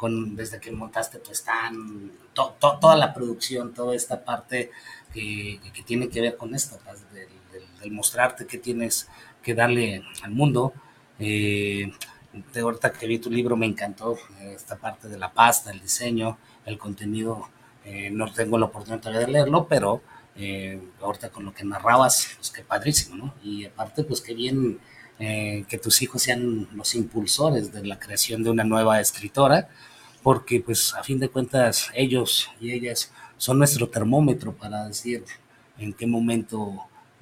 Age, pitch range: 30-49, 105-120 Hz